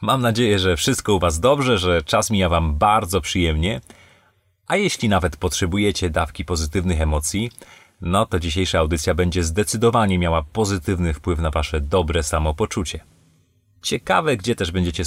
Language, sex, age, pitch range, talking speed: Polish, male, 30-49, 85-100 Hz, 145 wpm